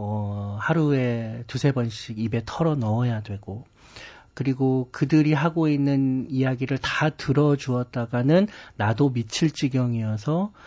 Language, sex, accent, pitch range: Korean, male, native, 120-155 Hz